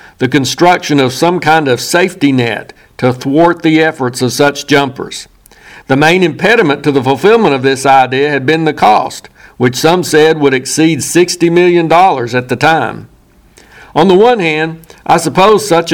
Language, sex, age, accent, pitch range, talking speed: English, male, 60-79, American, 135-165 Hz, 170 wpm